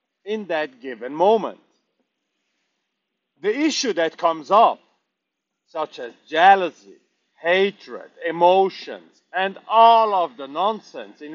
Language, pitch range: English, 175-260 Hz